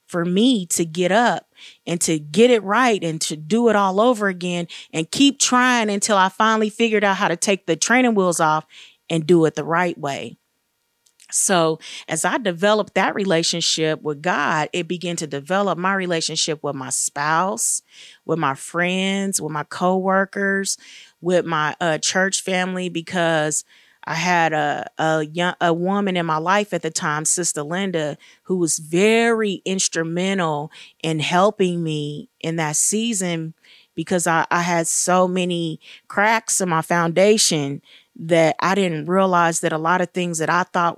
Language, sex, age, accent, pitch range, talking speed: English, female, 30-49, American, 160-190 Hz, 165 wpm